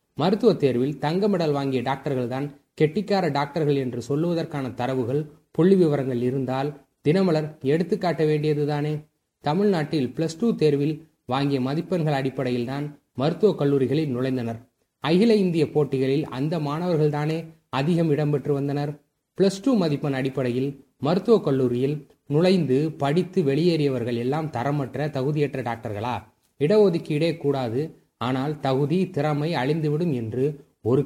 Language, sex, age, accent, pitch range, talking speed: Tamil, male, 30-49, native, 135-165 Hz, 105 wpm